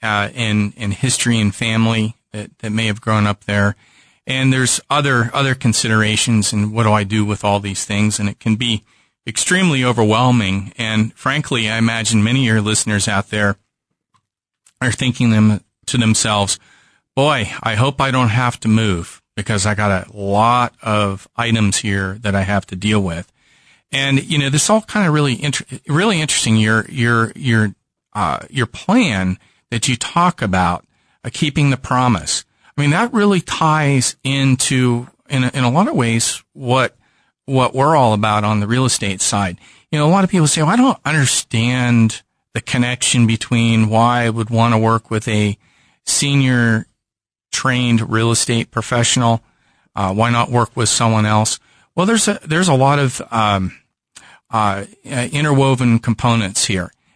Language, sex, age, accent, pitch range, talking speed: English, male, 40-59, American, 105-130 Hz, 175 wpm